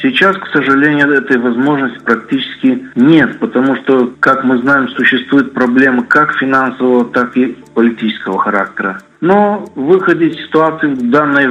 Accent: native